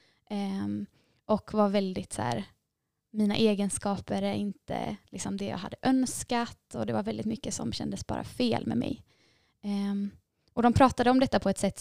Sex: female